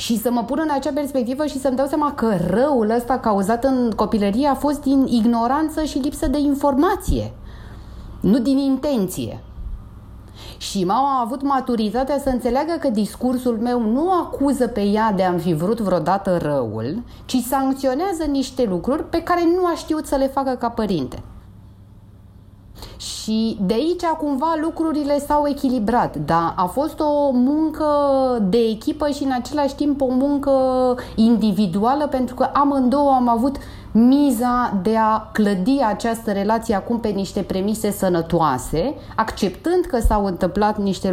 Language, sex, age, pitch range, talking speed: Romanian, female, 30-49, 190-275 Hz, 150 wpm